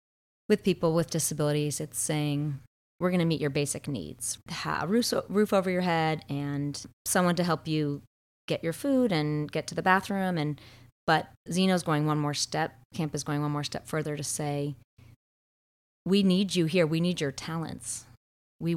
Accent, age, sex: American, 30-49, female